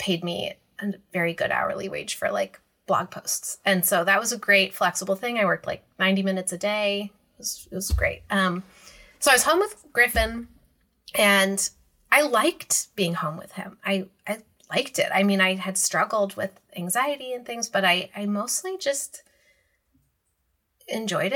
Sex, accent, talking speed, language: female, American, 180 wpm, English